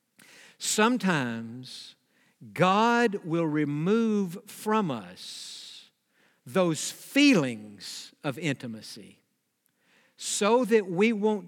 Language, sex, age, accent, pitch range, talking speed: English, male, 60-79, American, 160-235 Hz, 75 wpm